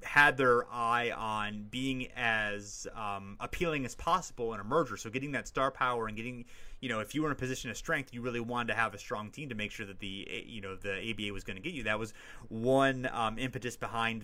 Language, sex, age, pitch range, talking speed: English, male, 30-49, 105-125 Hz, 245 wpm